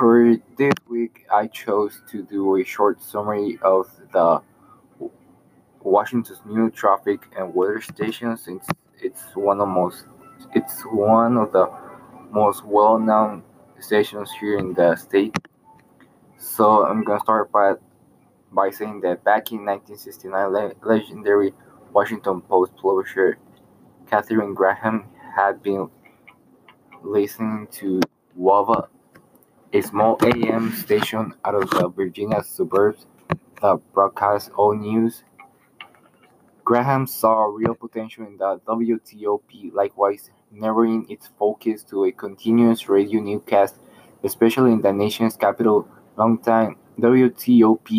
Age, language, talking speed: 20-39, English, 120 wpm